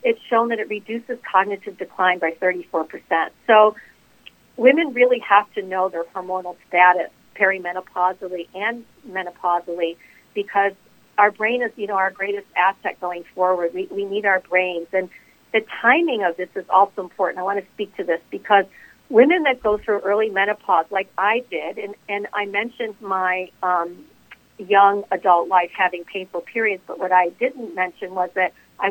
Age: 50-69